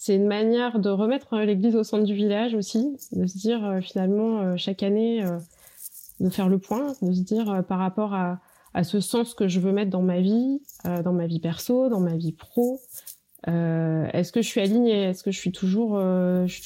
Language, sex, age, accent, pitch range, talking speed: French, female, 20-39, French, 175-220 Hz, 230 wpm